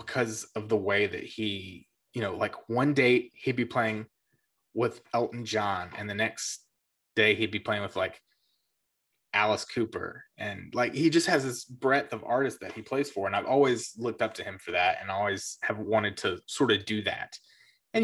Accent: American